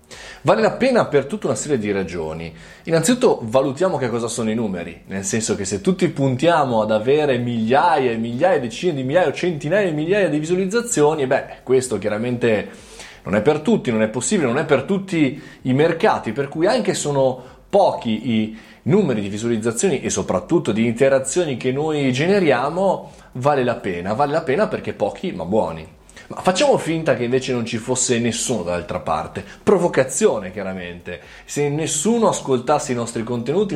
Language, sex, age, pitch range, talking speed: Italian, male, 20-39, 115-155 Hz, 170 wpm